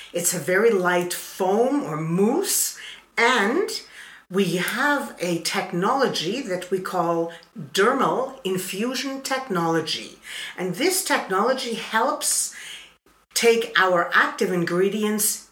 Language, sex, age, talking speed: Finnish, female, 50-69, 100 wpm